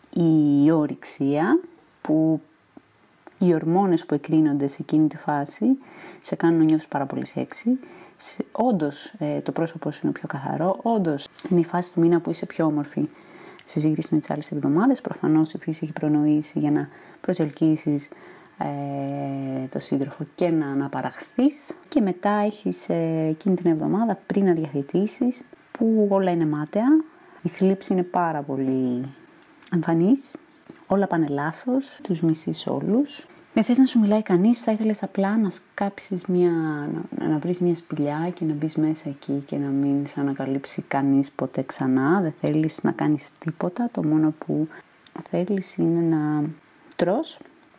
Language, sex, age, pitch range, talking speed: Greek, female, 20-39, 150-215 Hz, 155 wpm